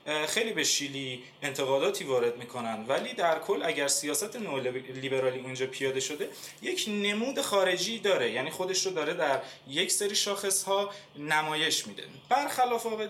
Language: Persian